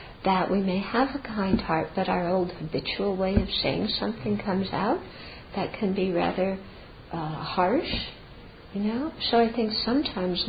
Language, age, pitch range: English, 50-69, 175-205 Hz